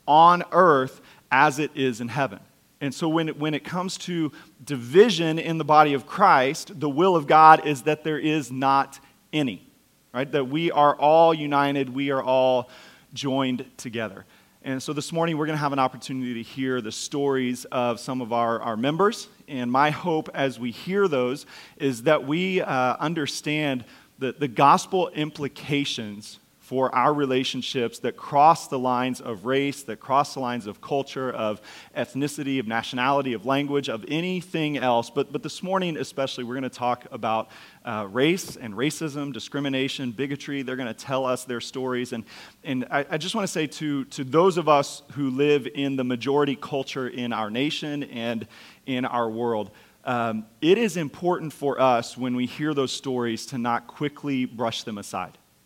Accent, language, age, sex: American, English, 40-59, male